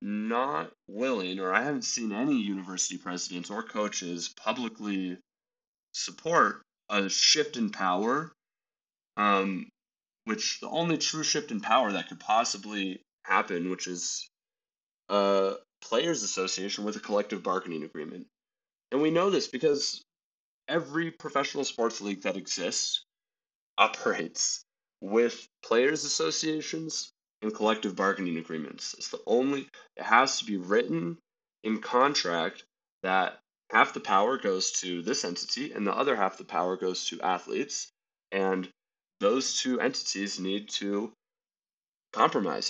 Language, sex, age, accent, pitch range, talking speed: English, male, 30-49, American, 95-155 Hz, 130 wpm